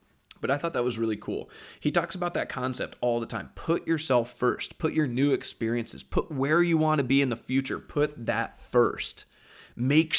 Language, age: English, 30-49